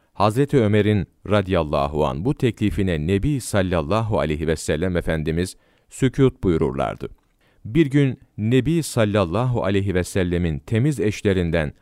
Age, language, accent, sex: 40-59, Turkish, native, male